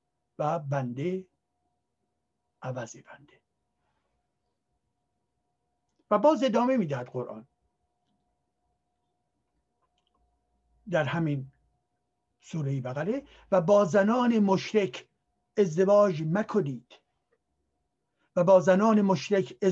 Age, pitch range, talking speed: 60-79, 150-215 Hz, 75 wpm